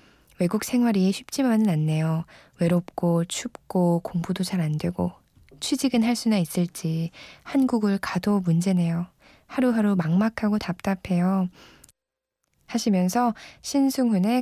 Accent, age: native, 20-39